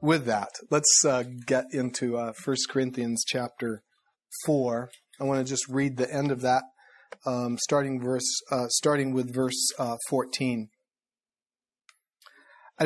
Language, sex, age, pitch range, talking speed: English, male, 40-59, 130-170 Hz, 135 wpm